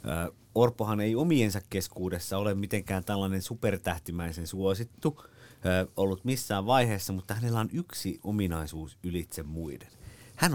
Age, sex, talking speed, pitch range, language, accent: 30-49, male, 115 wpm, 95-120 Hz, Finnish, native